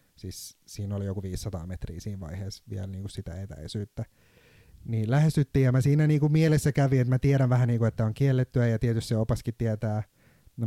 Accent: native